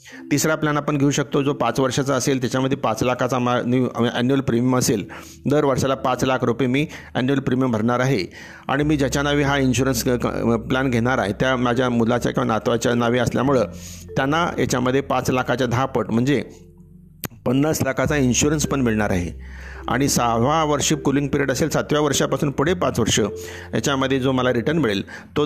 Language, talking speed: Marathi, 150 wpm